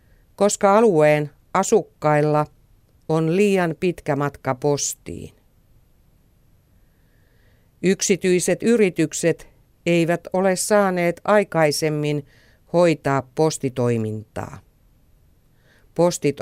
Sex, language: female, Finnish